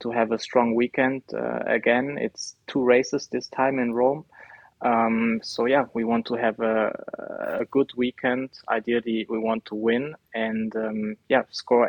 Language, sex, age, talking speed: English, male, 20-39, 170 wpm